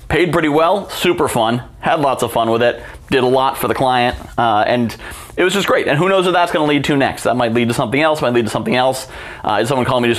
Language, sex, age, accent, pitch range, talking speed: English, male, 30-49, American, 115-150 Hz, 290 wpm